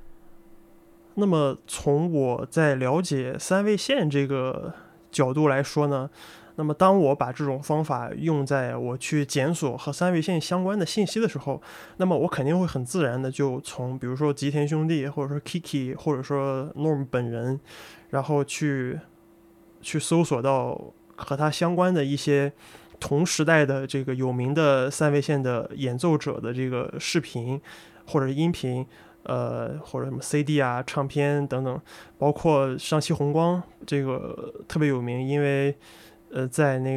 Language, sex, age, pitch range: Chinese, male, 20-39, 135-165 Hz